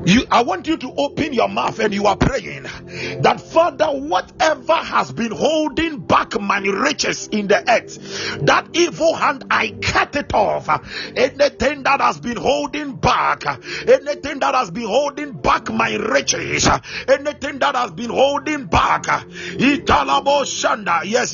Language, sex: English, male